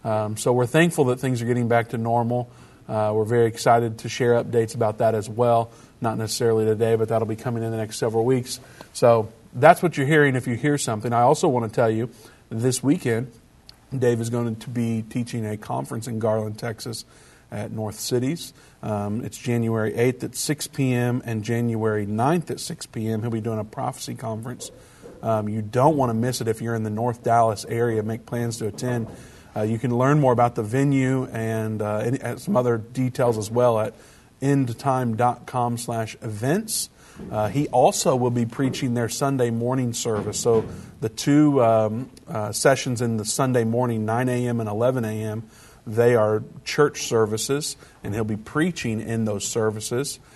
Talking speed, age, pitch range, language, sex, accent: 190 wpm, 50-69, 110-125 Hz, English, male, American